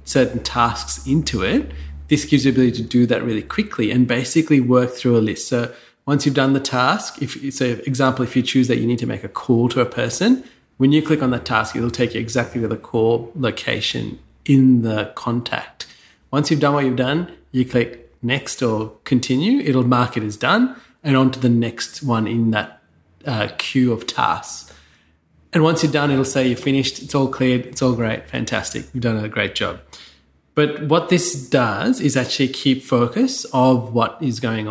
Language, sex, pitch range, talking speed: English, male, 115-135 Hz, 210 wpm